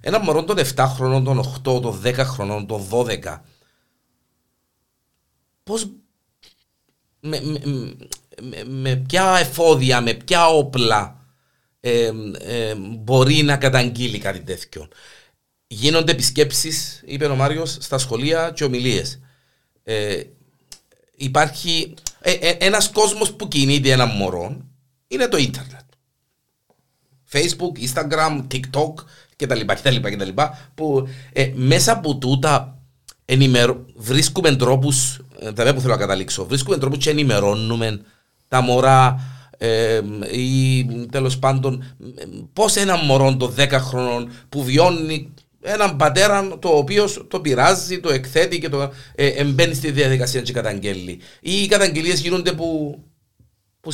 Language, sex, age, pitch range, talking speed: Greek, male, 50-69, 125-155 Hz, 110 wpm